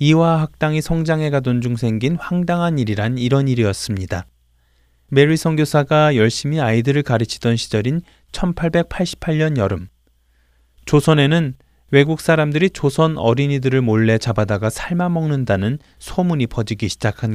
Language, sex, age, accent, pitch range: Korean, male, 20-39, native, 105-155 Hz